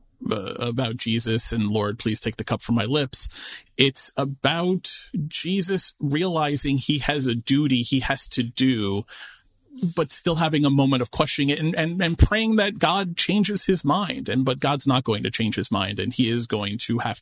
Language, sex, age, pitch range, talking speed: English, male, 30-49, 115-145 Hz, 195 wpm